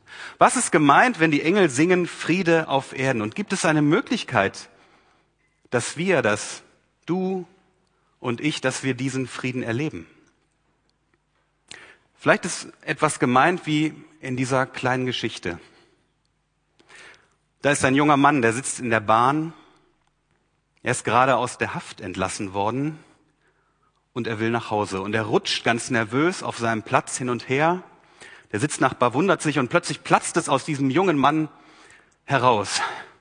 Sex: male